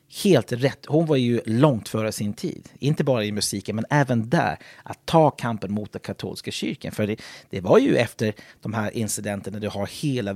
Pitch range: 105-135 Hz